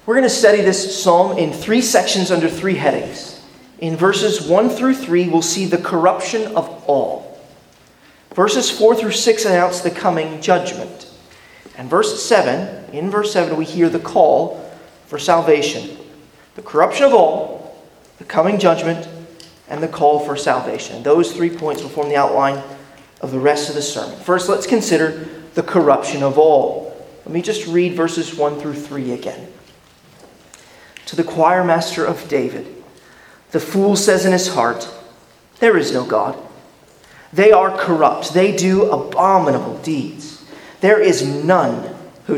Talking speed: 155 wpm